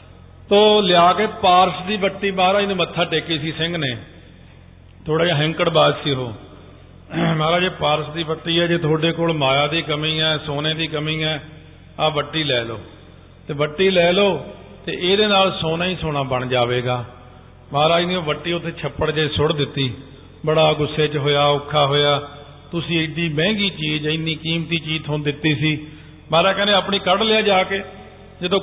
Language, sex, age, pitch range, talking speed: Punjabi, male, 50-69, 145-185 Hz, 175 wpm